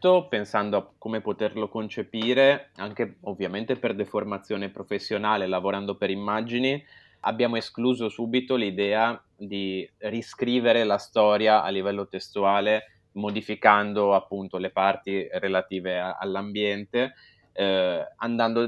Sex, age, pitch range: male, 20-39, 95-115 Hz